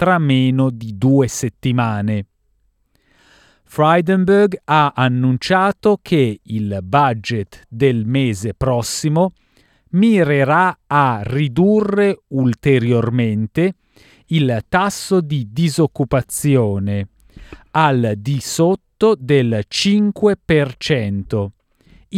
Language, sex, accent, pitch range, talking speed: Italian, male, native, 120-175 Hz, 75 wpm